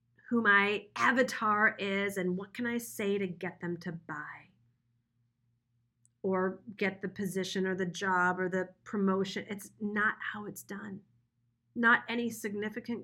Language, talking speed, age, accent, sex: English, 145 wpm, 40-59, American, female